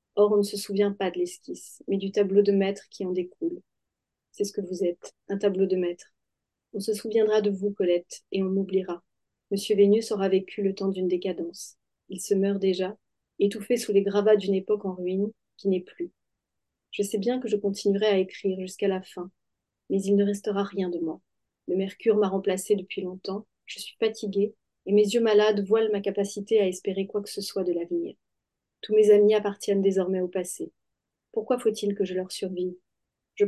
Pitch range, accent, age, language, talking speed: 190-210 Hz, French, 30-49, French, 205 wpm